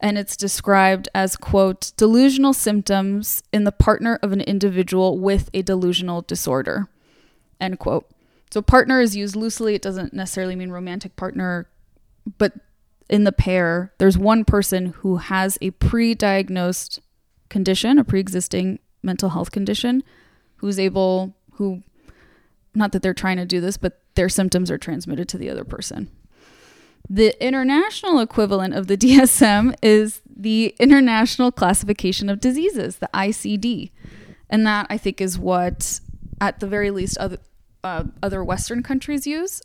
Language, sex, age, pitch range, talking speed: English, female, 20-39, 190-235 Hz, 145 wpm